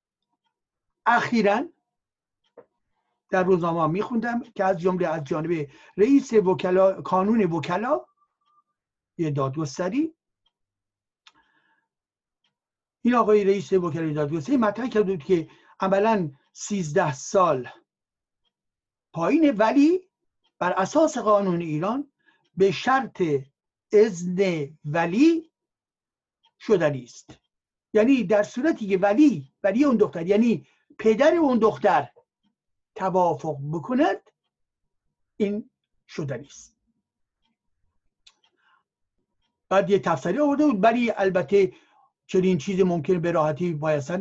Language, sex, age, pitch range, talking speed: Persian, male, 60-79, 180-260 Hz, 90 wpm